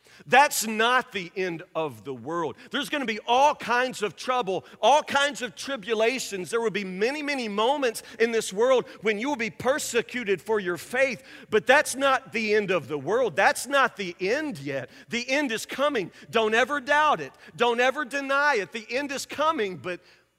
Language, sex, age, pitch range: English, male, 40-59, 205-275 Hz